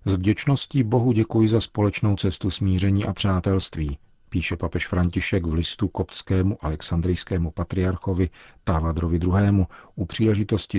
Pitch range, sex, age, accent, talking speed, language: 85-95 Hz, male, 50-69, native, 115 wpm, Czech